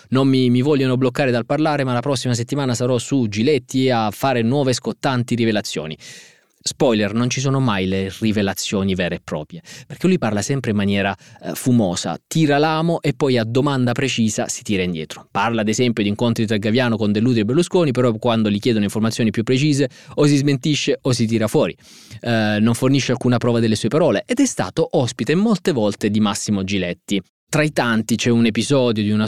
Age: 20-39